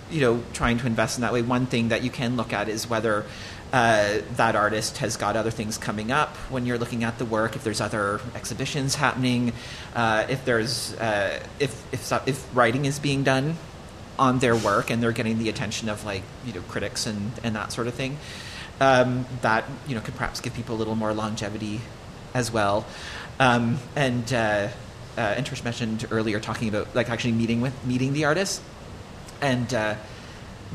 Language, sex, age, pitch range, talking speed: English, male, 30-49, 110-135 Hz, 195 wpm